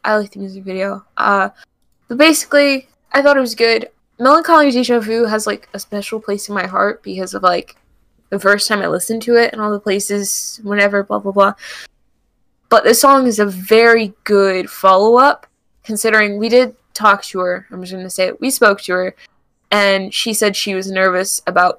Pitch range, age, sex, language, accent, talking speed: 190-230 Hz, 10-29, female, English, American, 200 wpm